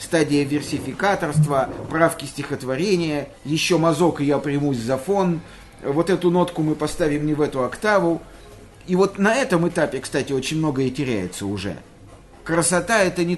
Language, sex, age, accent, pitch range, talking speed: Russian, male, 50-69, native, 130-175 Hz, 150 wpm